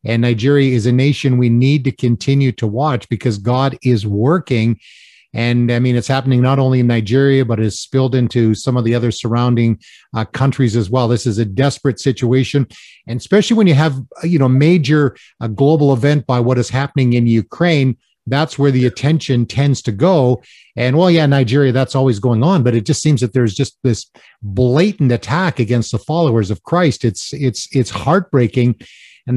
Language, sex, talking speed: English, male, 190 wpm